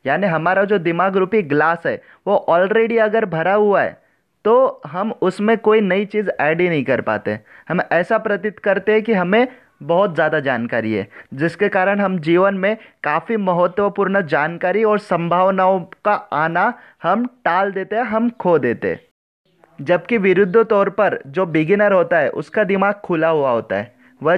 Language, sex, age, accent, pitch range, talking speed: English, male, 30-49, Indian, 165-205 Hz, 145 wpm